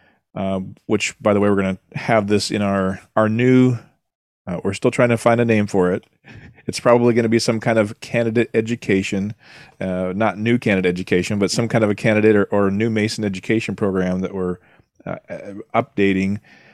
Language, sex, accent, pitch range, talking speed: English, male, American, 100-125 Hz, 200 wpm